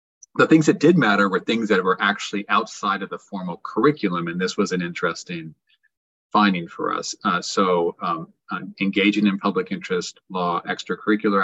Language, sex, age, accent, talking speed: English, male, 30-49, American, 175 wpm